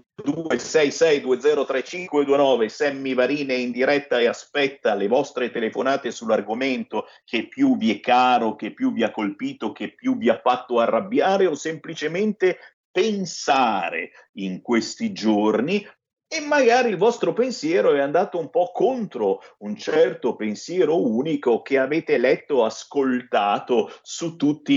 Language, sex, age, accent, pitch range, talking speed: Italian, male, 50-69, native, 135-225 Hz, 130 wpm